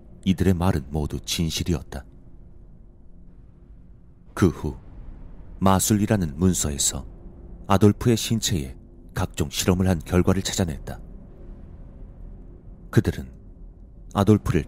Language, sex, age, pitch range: Korean, male, 40-59, 80-95 Hz